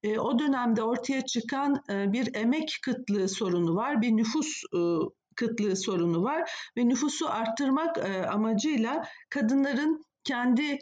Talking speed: 110 wpm